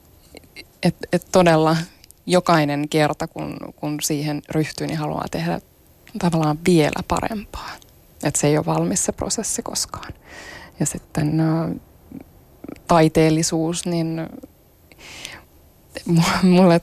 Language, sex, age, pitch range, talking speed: Finnish, female, 20-39, 150-175 Hz, 100 wpm